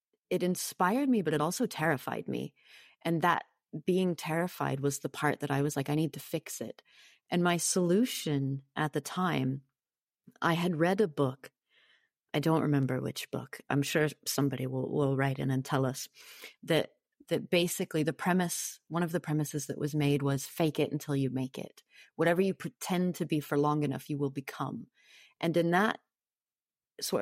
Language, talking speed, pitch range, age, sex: English, 185 wpm, 140-175 Hz, 30-49, female